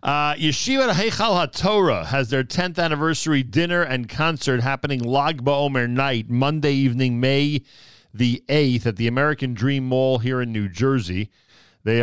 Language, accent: English, American